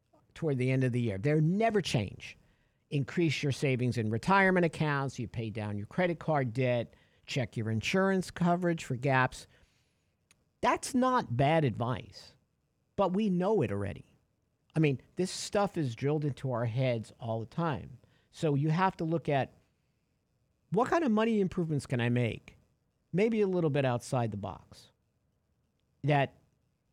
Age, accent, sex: 50-69, American, male